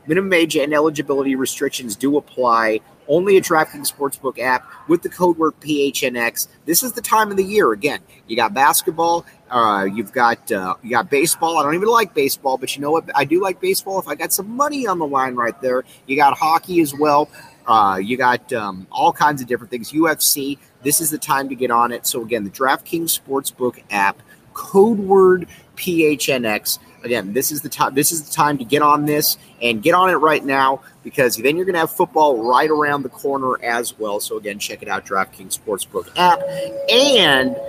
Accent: American